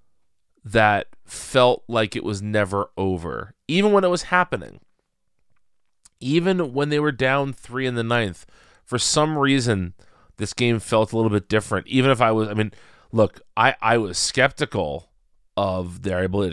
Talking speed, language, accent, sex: 165 wpm, English, American, male